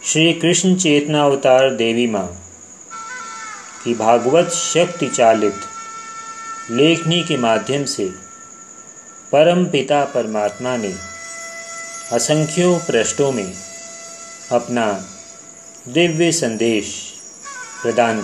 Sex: male